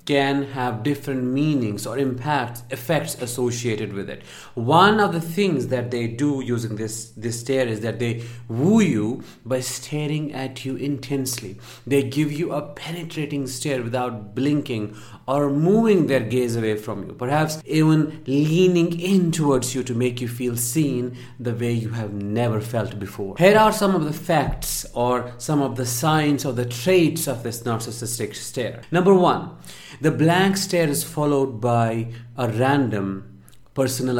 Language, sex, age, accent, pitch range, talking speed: English, male, 50-69, Indian, 115-145 Hz, 165 wpm